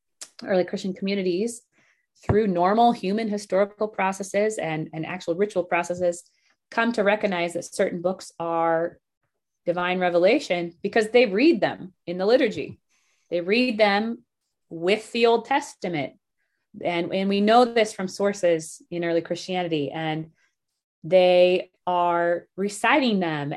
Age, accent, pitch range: 30-49, American, 170-215 Hz